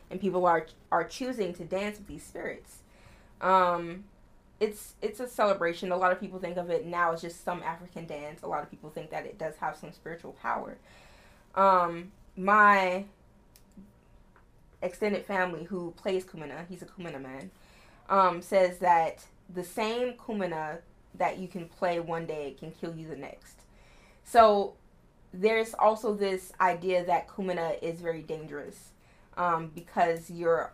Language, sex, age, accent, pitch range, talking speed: English, female, 20-39, American, 165-185 Hz, 160 wpm